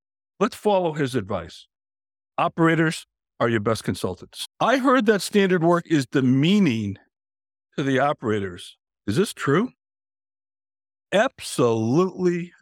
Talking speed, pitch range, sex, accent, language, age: 110 wpm, 110-160 Hz, male, American, English, 60-79